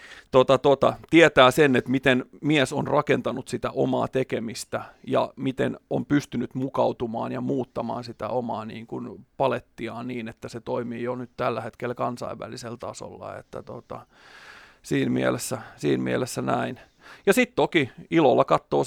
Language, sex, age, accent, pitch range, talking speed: Finnish, male, 30-49, native, 120-145 Hz, 125 wpm